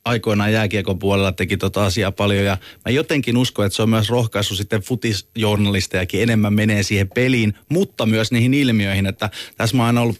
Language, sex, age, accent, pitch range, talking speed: Finnish, male, 30-49, native, 105-115 Hz, 190 wpm